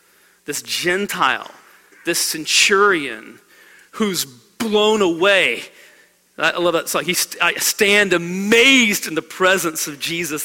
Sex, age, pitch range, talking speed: male, 40-59, 165-230 Hz, 110 wpm